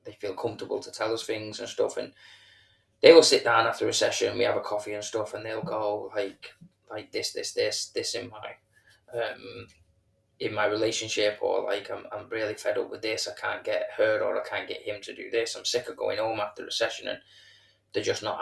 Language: English